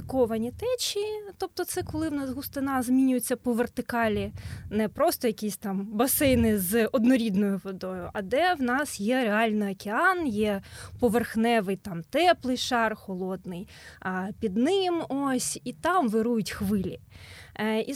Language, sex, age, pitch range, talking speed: Ukrainian, female, 20-39, 230-300 Hz, 135 wpm